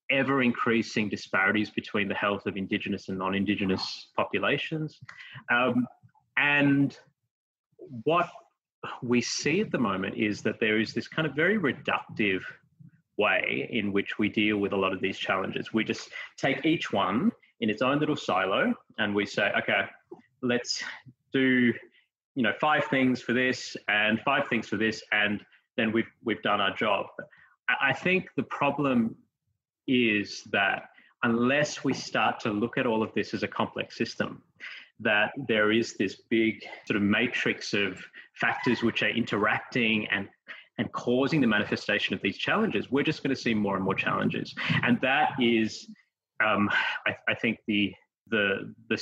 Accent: Australian